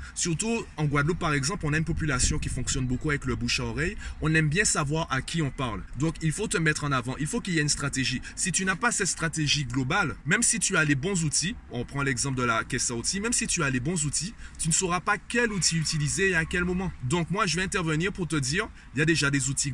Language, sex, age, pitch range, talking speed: French, male, 30-49, 125-165 Hz, 285 wpm